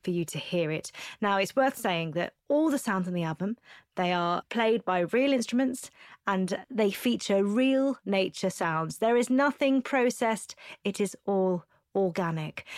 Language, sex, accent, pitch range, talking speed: English, female, British, 170-230 Hz, 170 wpm